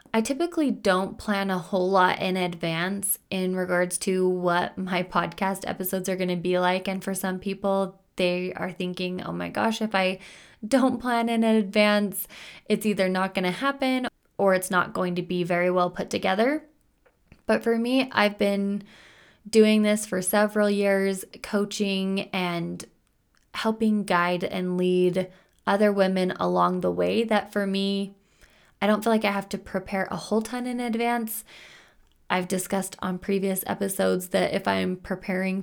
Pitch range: 180-205 Hz